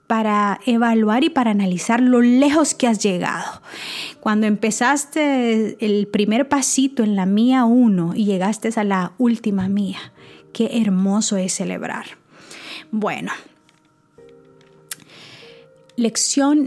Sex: female